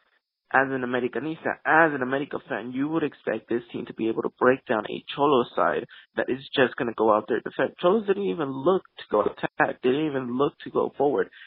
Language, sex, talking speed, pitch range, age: English, male, 235 wpm, 125-150 Hz, 20-39